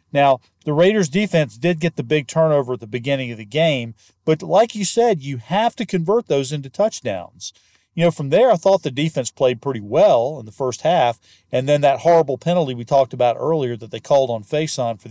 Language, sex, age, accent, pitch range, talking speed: English, male, 40-59, American, 125-180 Hz, 225 wpm